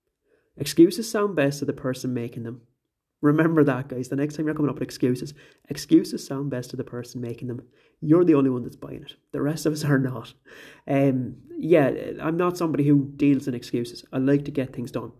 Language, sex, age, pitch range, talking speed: English, male, 30-49, 125-150 Hz, 215 wpm